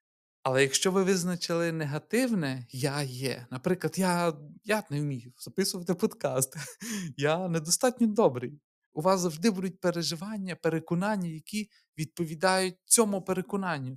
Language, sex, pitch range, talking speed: Ukrainian, male, 130-170 Hz, 115 wpm